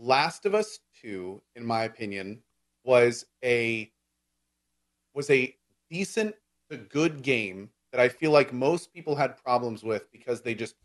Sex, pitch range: male, 110-150 Hz